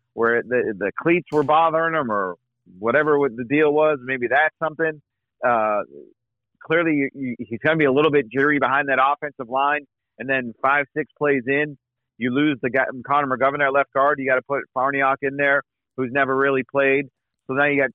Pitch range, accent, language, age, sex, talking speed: 120-150 Hz, American, English, 40-59, male, 205 wpm